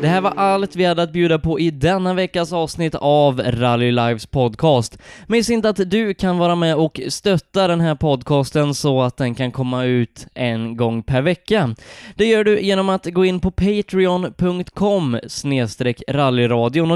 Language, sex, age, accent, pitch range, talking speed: Swedish, male, 10-29, native, 130-185 Hz, 170 wpm